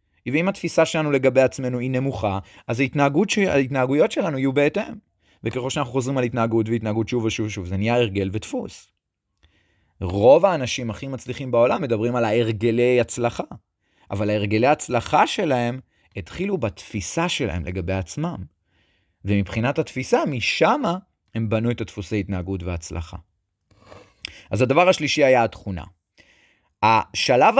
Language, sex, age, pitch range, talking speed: Hebrew, male, 30-49, 100-145 Hz, 130 wpm